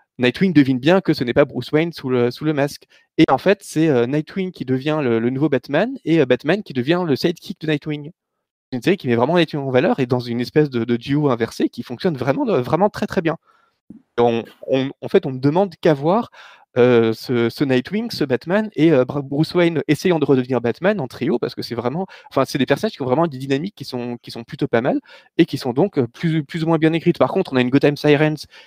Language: French